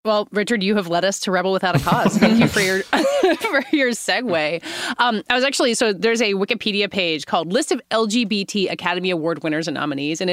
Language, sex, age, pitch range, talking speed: English, female, 20-39, 165-235 Hz, 215 wpm